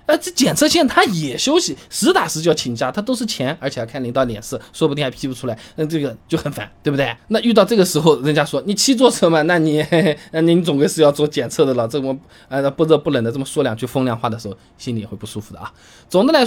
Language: Chinese